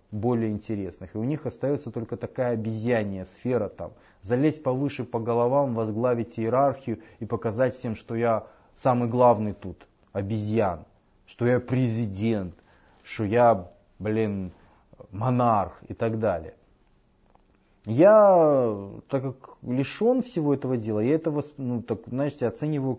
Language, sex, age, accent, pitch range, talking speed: Russian, male, 30-49, native, 105-130 Hz, 120 wpm